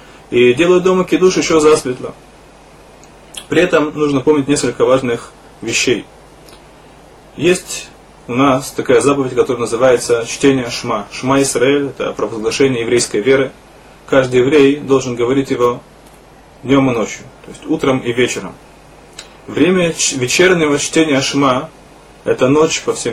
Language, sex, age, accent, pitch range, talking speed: Russian, male, 20-39, native, 125-160 Hz, 130 wpm